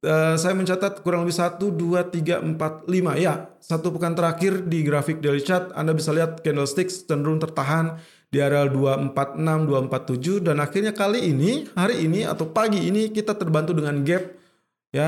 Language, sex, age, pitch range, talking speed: Indonesian, male, 20-39, 145-180 Hz, 165 wpm